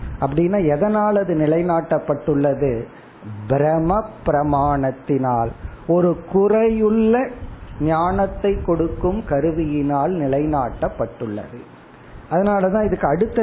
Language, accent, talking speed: Tamil, native, 65 wpm